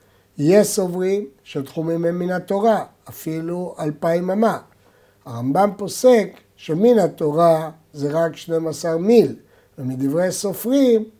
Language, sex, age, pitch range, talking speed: Hebrew, male, 60-79, 145-220 Hz, 100 wpm